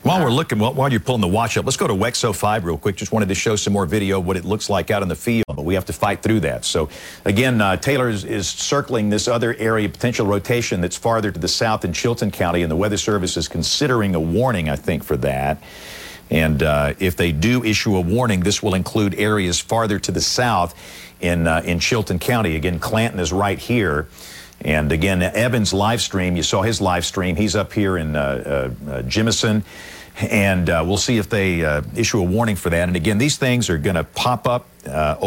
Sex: male